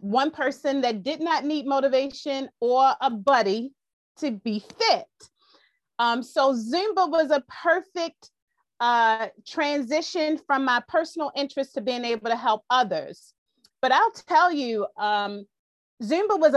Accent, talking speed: American, 140 wpm